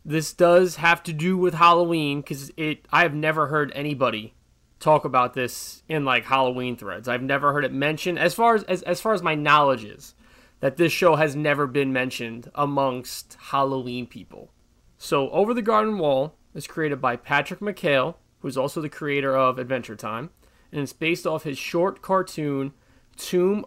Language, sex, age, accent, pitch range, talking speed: English, male, 20-39, American, 135-180 Hz, 180 wpm